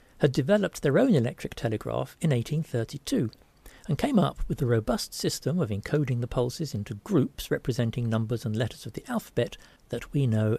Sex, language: male, English